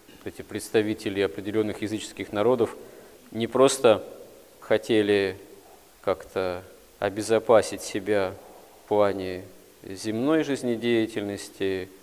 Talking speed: 75 wpm